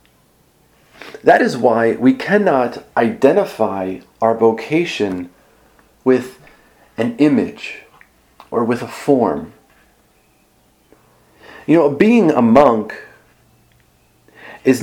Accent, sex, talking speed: American, male, 85 wpm